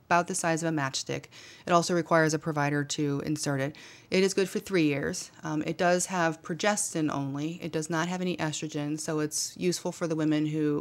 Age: 30-49